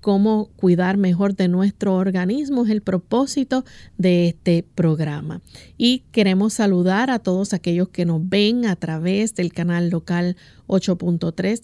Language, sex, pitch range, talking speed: Spanish, female, 180-225 Hz, 140 wpm